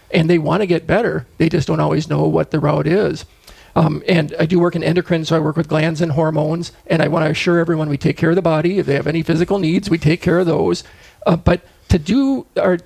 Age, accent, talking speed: 40-59, American, 265 wpm